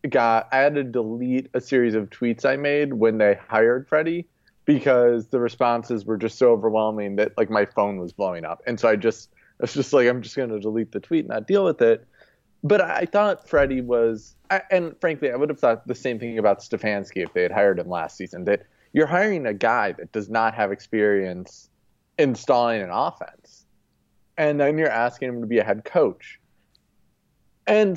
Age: 20-39